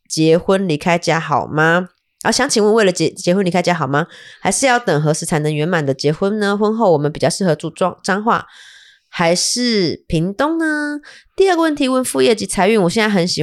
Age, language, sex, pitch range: 20-39, Chinese, female, 155-210 Hz